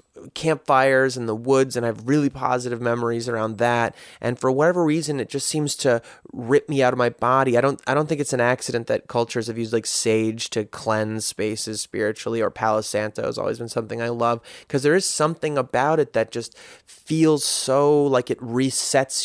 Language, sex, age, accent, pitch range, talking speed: English, male, 30-49, American, 120-140 Hz, 205 wpm